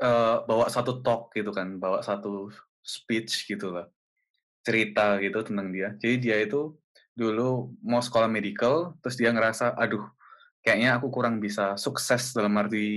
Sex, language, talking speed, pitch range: male, Indonesian, 150 wpm, 105-125 Hz